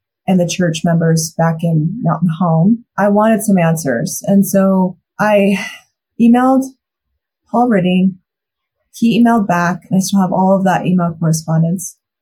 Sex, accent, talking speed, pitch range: female, American, 140 wpm, 170-200 Hz